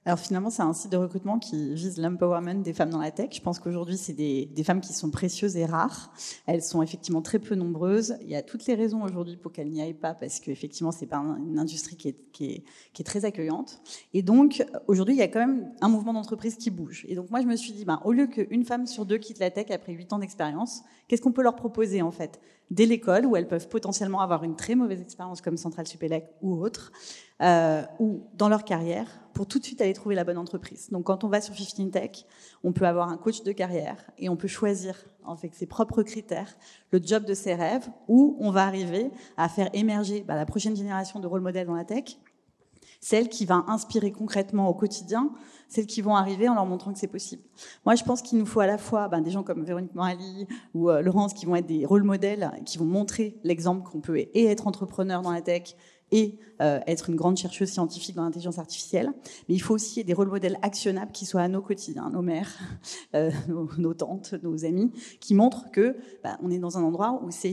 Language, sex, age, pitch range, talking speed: French, female, 30-49, 175-220 Hz, 240 wpm